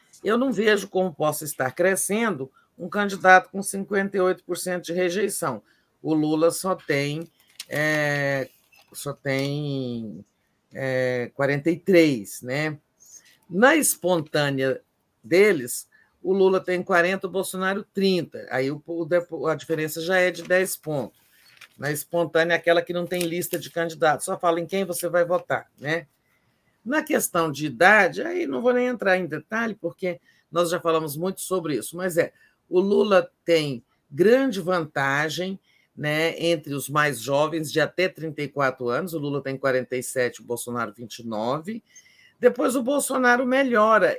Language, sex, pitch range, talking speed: Portuguese, male, 150-195 Hz, 135 wpm